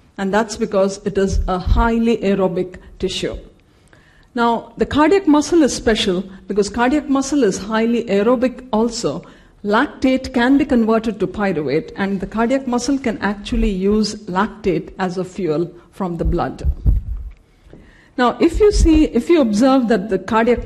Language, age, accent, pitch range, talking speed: English, 50-69, Indian, 200-250 Hz, 150 wpm